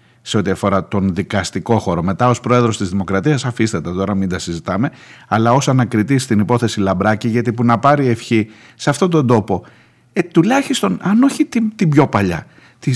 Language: Greek